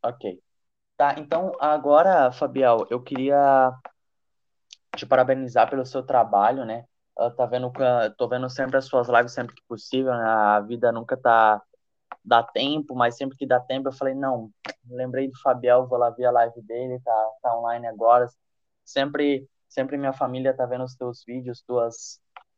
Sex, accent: male, Brazilian